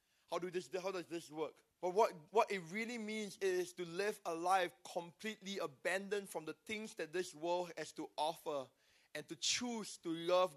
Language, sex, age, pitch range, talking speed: English, male, 20-39, 180-215 Hz, 195 wpm